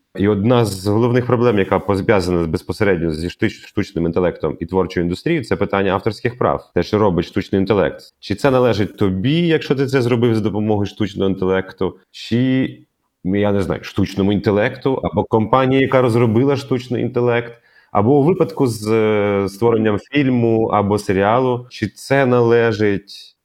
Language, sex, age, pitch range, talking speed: Ukrainian, male, 30-49, 90-115 Hz, 150 wpm